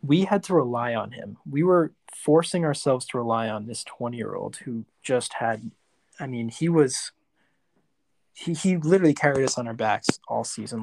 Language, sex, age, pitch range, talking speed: English, male, 20-39, 115-135 Hz, 175 wpm